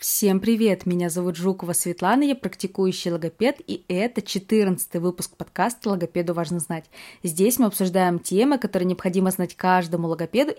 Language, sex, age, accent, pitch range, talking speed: Russian, female, 20-39, native, 180-245 Hz, 145 wpm